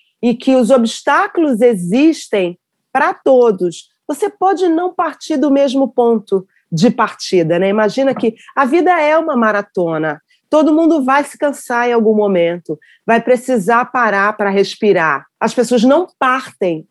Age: 40-59